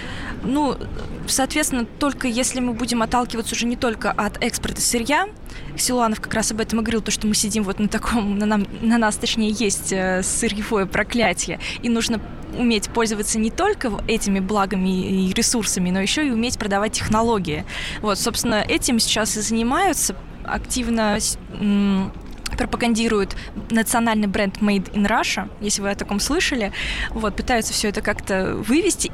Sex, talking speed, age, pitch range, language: female, 155 wpm, 20-39, 195-230 Hz, Russian